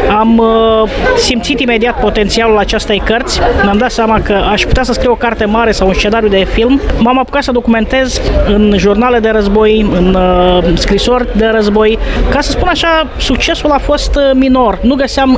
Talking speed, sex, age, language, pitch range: 180 wpm, female, 20-39, English, 190-245 Hz